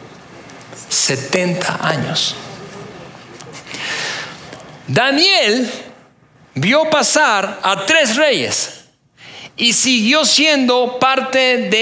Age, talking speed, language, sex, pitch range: 40-59, 65 wpm, Spanish, male, 225-285 Hz